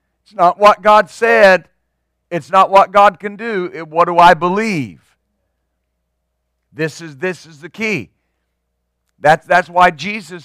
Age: 50-69